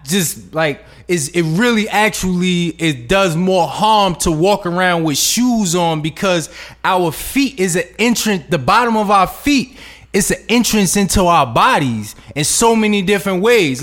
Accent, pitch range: American, 175-230 Hz